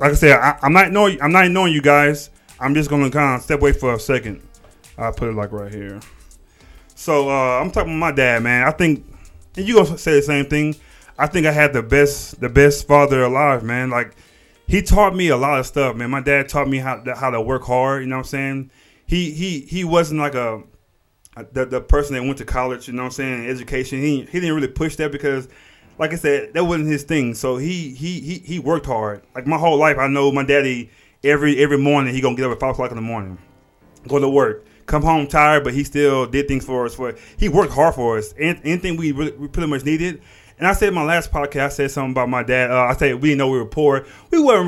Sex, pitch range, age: male, 125-155 Hz, 20-39